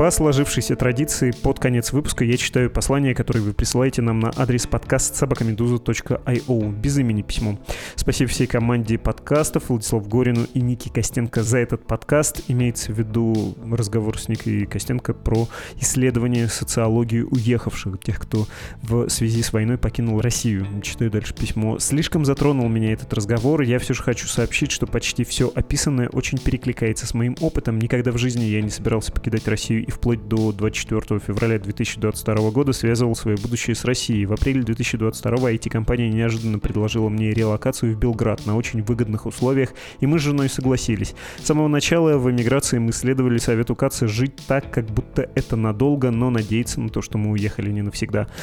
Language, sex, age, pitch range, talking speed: Russian, male, 20-39, 110-130 Hz, 165 wpm